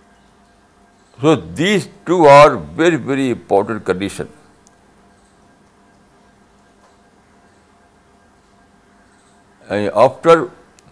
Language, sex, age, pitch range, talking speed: Urdu, male, 60-79, 100-135 Hz, 55 wpm